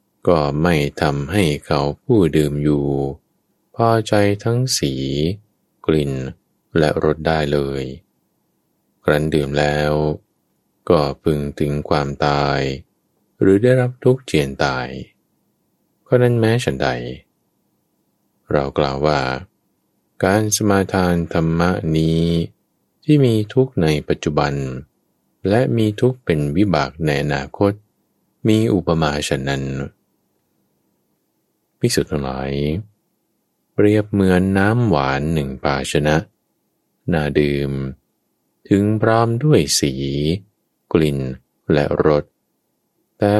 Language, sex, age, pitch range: Thai, male, 20-39, 70-100 Hz